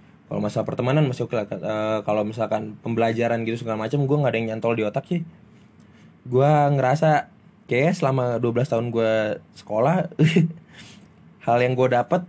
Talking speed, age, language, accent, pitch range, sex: 160 wpm, 20-39, Indonesian, native, 110-145 Hz, male